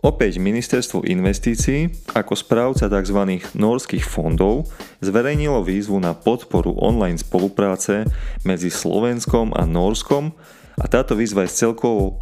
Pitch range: 90-115 Hz